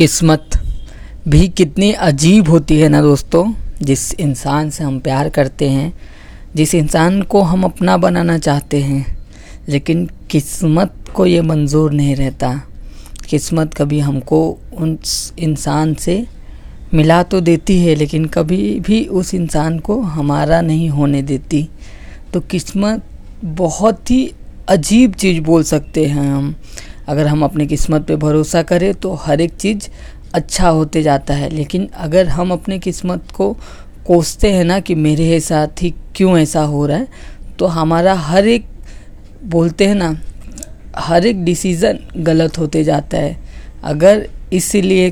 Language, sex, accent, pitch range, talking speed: Hindi, female, native, 150-185 Hz, 145 wpm